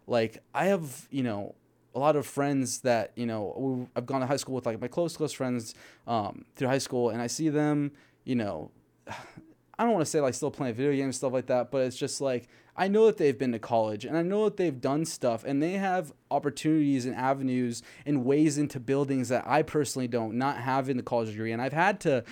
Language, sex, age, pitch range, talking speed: English, male, 20-39, 125-150 Hz, 240 wpm